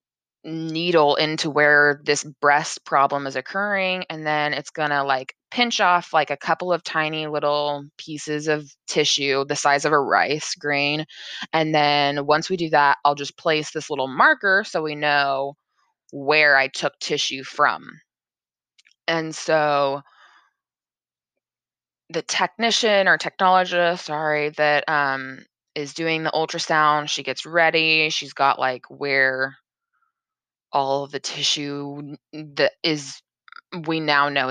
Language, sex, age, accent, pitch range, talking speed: English, female, 20-39, American, 140-165 Hz, 135 wpm